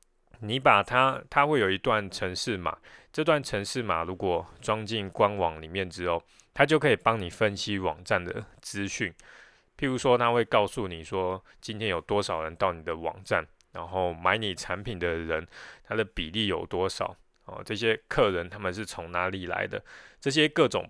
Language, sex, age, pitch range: Chinese, male, 20-39, 90-115 Hz